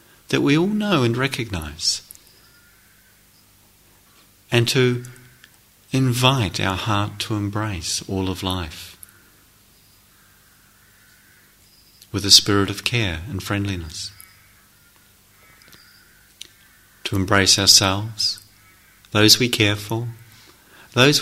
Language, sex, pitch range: English, male, 95-120 Hz